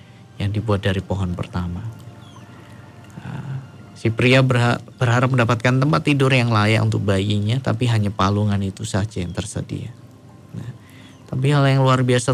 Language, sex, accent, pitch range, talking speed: Indonesian, male, native, 100-120 Hz, 140 wpm